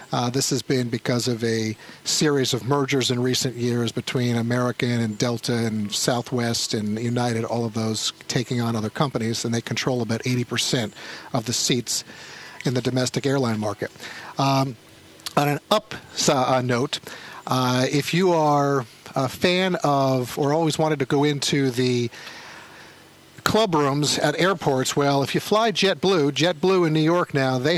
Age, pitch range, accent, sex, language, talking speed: 50-69, 125-150 Hz, American, male, English, 160 wpm